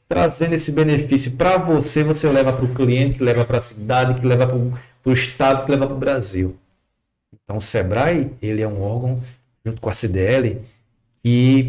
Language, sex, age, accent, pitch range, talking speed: Portuguese, male, 40-59, Brazilian, 110-140 Hz, 190 wpm